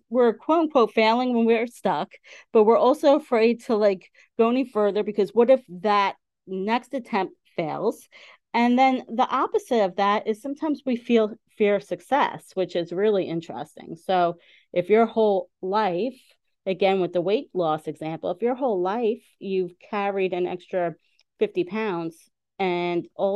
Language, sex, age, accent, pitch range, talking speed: English, female, 40-59, American, 180-230 Hz, 160 wpm